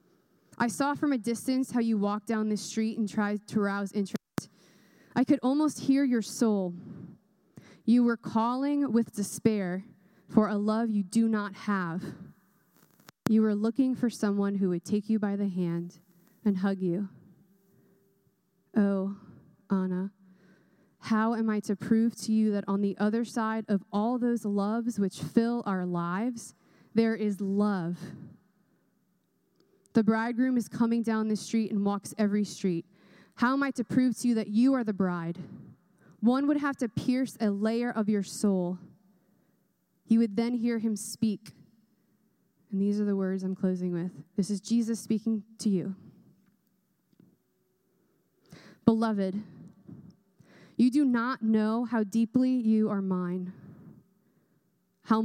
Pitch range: 195-225 Hz